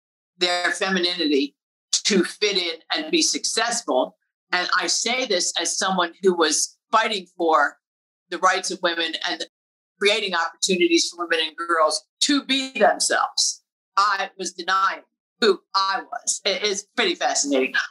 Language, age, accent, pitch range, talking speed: English, 50-69, American, 180-220 Hz, 140 wpm